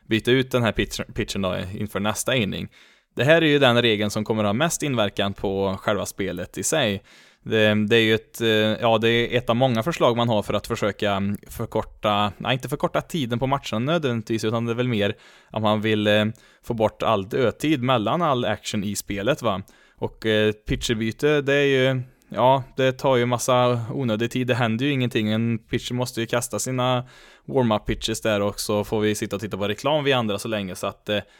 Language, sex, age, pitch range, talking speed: Swedish, male, 20-39, 105-125 Hz, 210 wpm